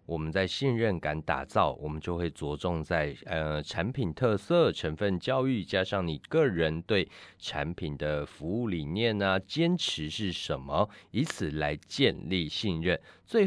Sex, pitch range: male, 80-115 Hz